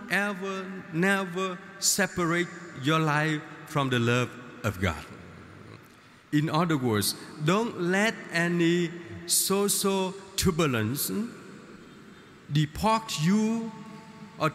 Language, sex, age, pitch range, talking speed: Vietnamese, male, 50-69, 160-205 Hz, 85 wpm